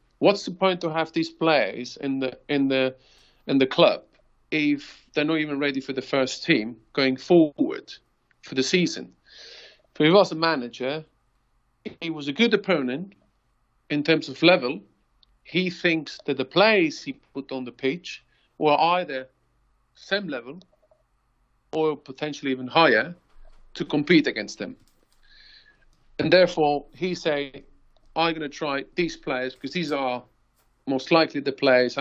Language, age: English, 50-69